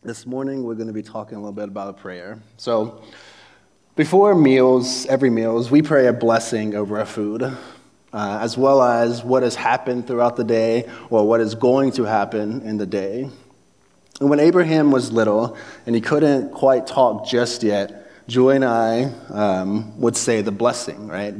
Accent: American